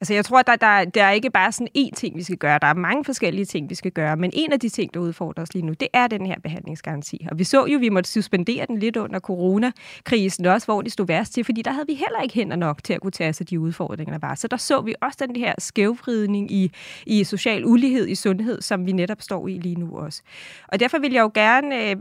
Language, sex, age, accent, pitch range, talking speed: Danish, female, 20-39, native, 195-250 Hz, 280 wpm